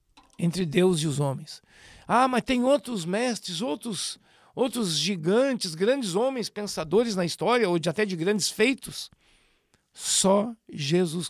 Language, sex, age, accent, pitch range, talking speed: Portuguese, male, 60-79, Brazilian, 160-215 Hz, 135 wpm